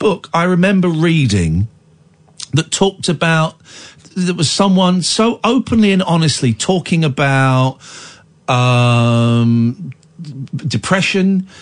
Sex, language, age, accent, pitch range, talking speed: male, English, 40-59, British, 125-180 Hz, 95 wpm